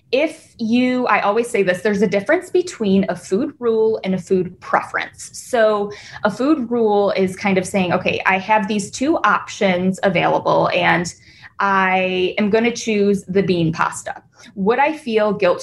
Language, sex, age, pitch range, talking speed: English, female, 20-39, 180-240 Hz, 170 wpm